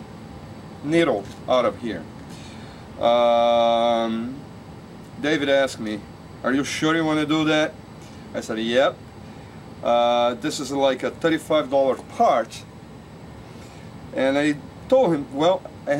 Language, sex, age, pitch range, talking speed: English, male, 30-49, 115-145 Hz, 120 wpm